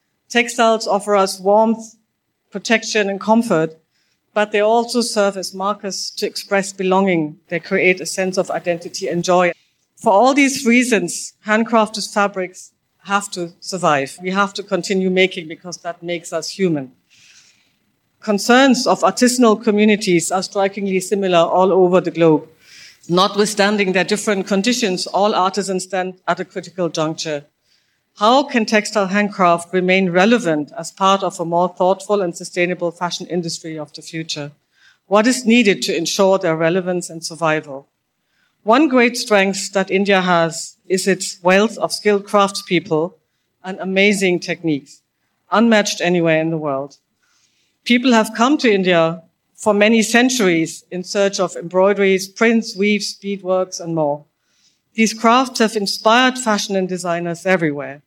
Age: 50-69